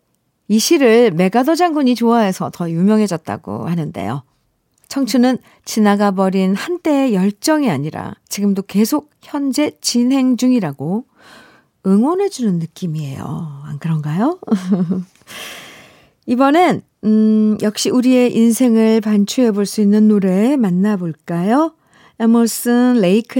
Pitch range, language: 180-270 Hz, Korean